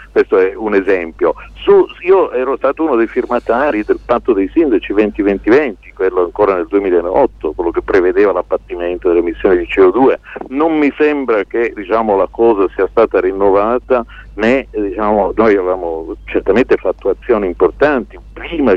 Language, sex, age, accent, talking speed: Italian, male, 50-69, native, 150 wpm